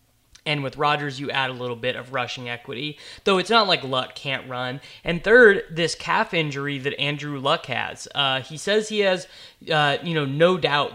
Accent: American